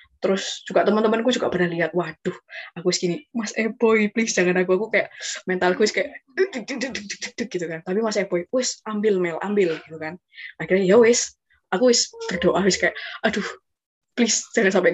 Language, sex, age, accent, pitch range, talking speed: Indonesian, female, 20-39, native, 180-235 Hz, 160 wpm